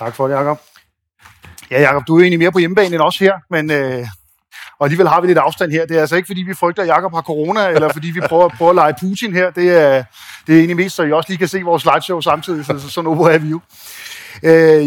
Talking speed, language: 270 wpm, Danish